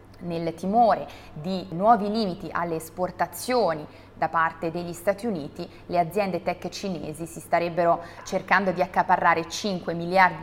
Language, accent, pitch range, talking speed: Italian, native, 165-195 Hz, 130 wpm